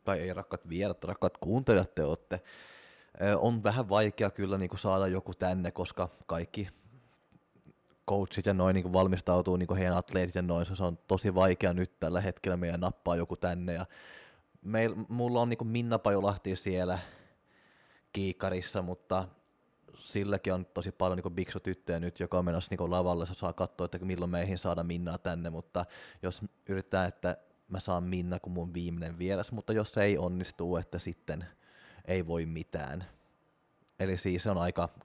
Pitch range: 90-100 Hz